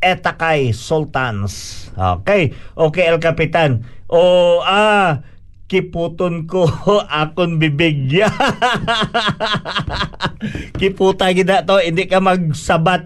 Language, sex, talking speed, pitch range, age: Filipino, male, 85 wpm, 135-185 Hz, 50-69